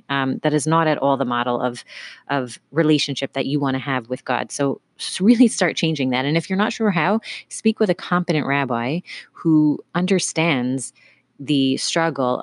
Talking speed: 185 wpm